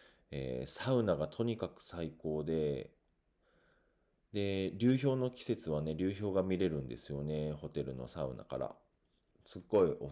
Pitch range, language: 75-115 Hz, Japanese